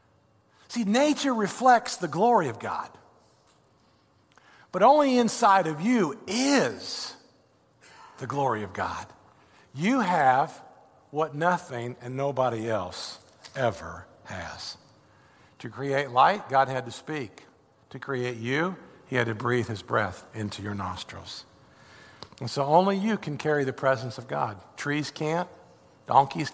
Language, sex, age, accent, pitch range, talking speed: English, male, 50-69, American, 120-155 Hz, 130 wpm